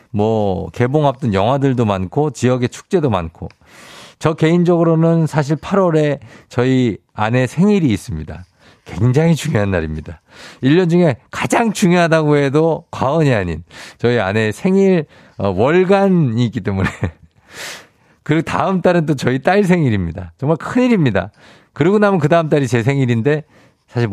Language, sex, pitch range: Korean, male, 105-160 Hz